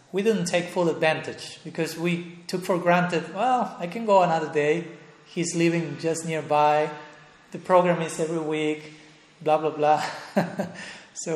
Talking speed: 155 wpm